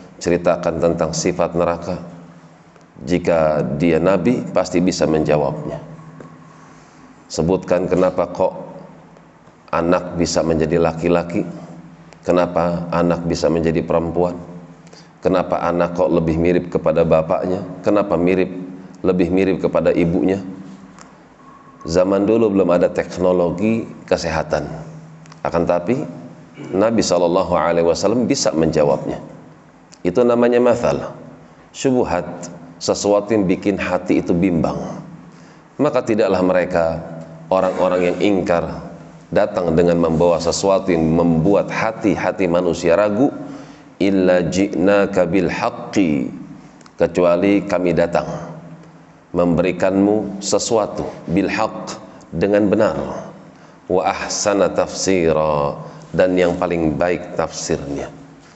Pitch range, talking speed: 85-95 Hz, 95 wpm